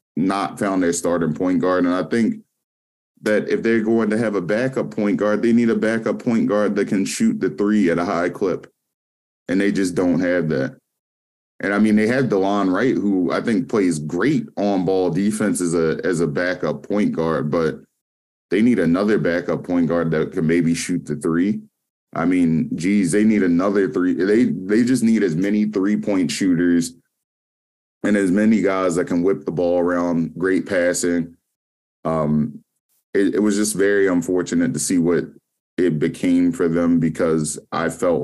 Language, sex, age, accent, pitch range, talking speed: English, male, 20-39, American, 80-105 Hz, 185 wpm